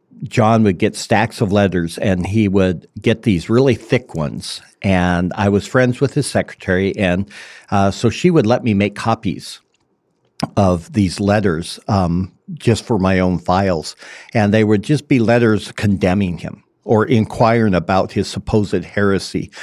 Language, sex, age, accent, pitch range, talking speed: English, male, 50-69, American, 95-115 Hz, 160 wpm